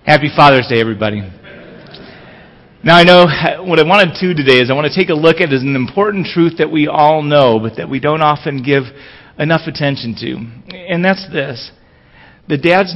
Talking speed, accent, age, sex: 195 wpm, American, 30-49, male